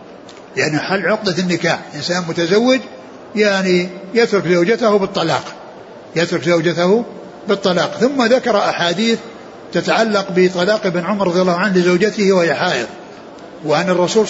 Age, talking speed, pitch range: 60-79, 110 wpm, 170-210 Hz